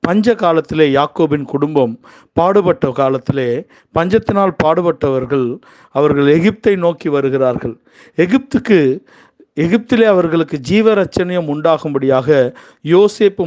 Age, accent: 50-69, native